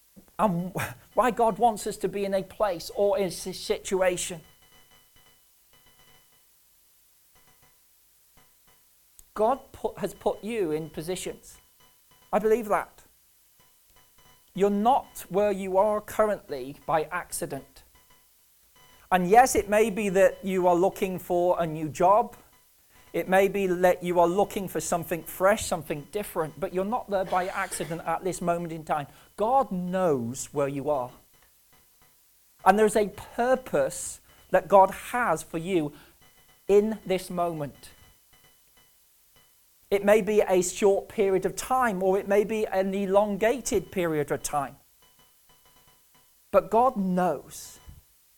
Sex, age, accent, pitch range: male, 40-59, British, 175-210 Hz